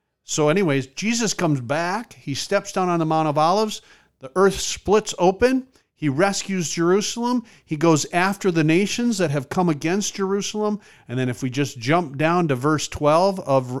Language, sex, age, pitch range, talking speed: English, male, 50-69, 125-180 Hz, 180 wpm